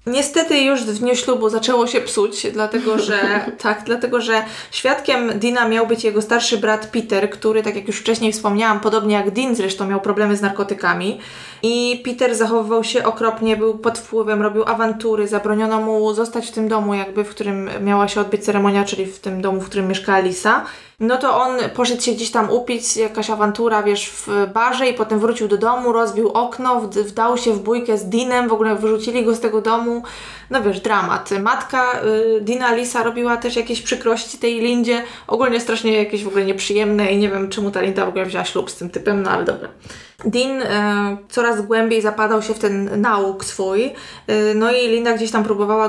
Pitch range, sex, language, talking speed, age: 205-235 Hz, female, Polish, 195 wpm, 20-39